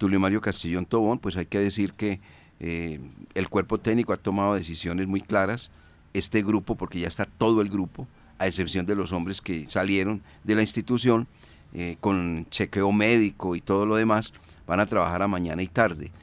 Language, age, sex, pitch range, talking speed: Spanish, 40-59, male, 90-110 Hz, 190 wpm